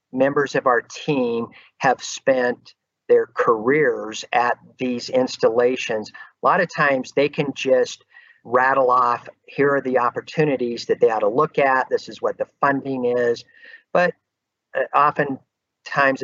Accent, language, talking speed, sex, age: American, English, 140 wpm, male, 50-69